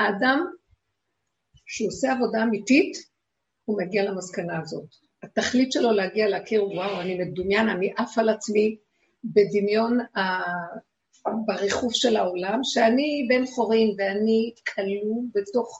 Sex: female